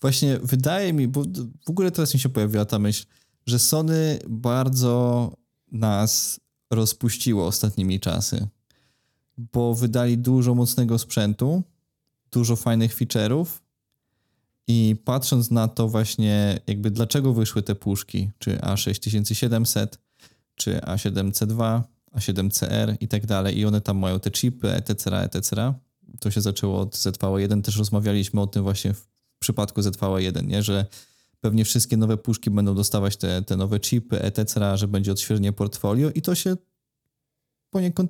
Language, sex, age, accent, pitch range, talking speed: Polish, male, 20-39, native, 100-125 Hz, 140 wpm